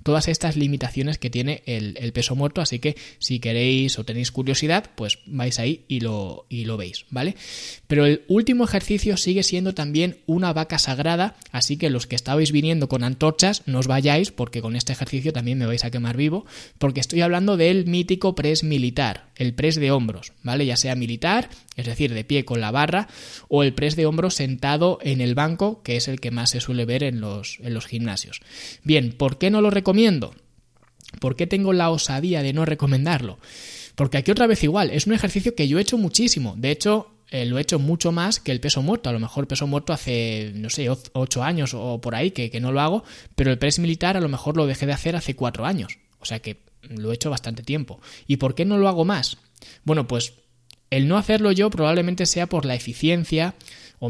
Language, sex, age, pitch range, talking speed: Spanish, male, 20-39, 125-170 Hz, 220 wpm